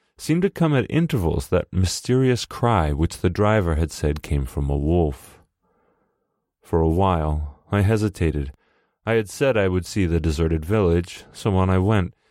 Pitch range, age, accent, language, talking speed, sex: 80-100 Hz, 30-49, American, English, 170 wpm, male